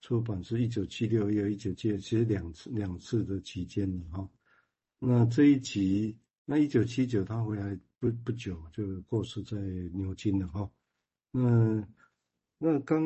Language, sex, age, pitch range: Chinese, male, 60-79, 95-120 Hz